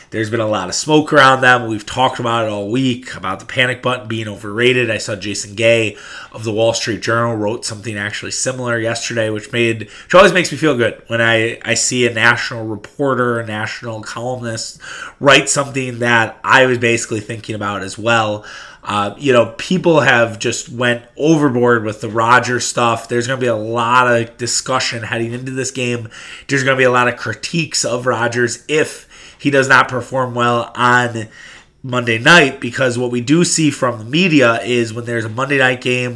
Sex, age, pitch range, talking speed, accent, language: male, 30-49, 115-135 Hz, 200 wpm, American, English